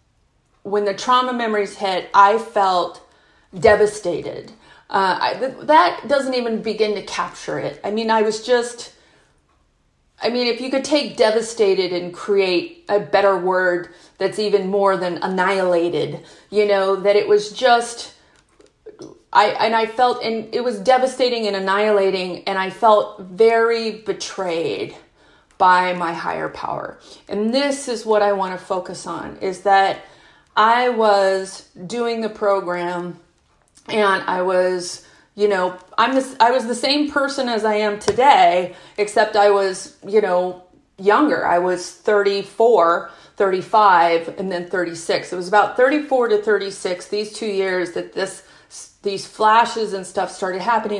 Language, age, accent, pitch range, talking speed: English, 30-49, American, 185-230 Hz, 150 wpm